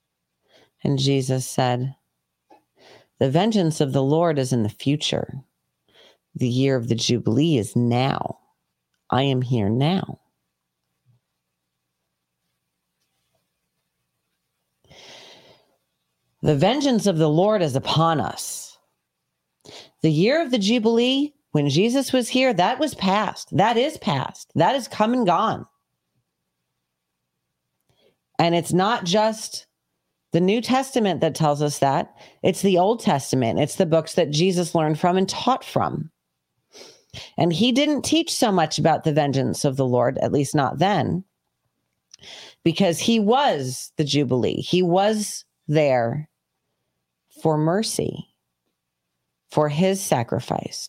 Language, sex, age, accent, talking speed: English, female, 40-59, American, 125 wpm